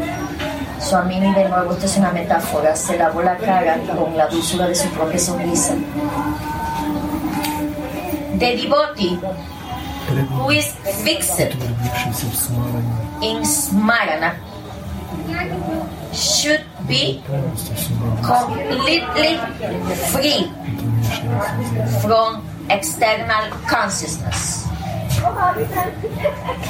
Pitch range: 130-200 Hz